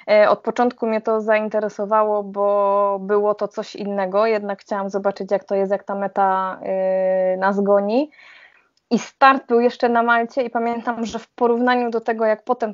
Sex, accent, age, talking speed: female, native, 20-39, 170 wpm